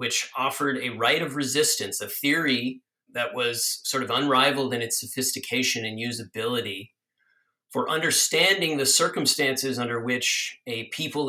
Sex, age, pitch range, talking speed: male, 40-59, 115-140 Hz, 140 wpm